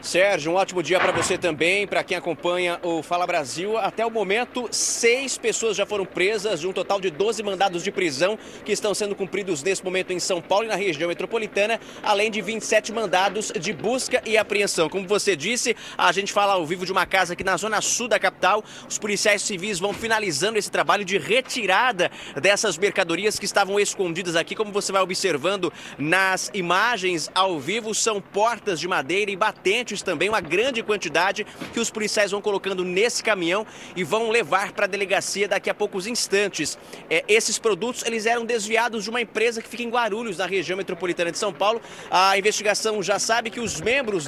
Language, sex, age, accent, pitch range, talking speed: Portuguese, male, 20-39, Brazilian, 190-225 Hz, 195 wpm